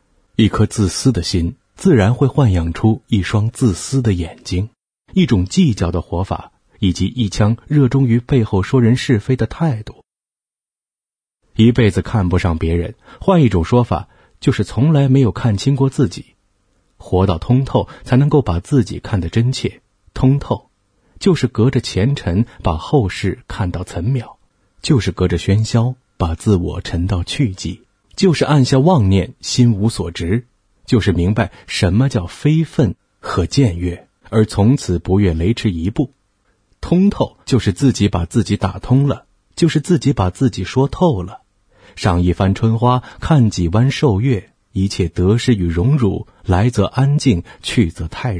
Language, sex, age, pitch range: Chinese, male, 30-49, 95-130 Hz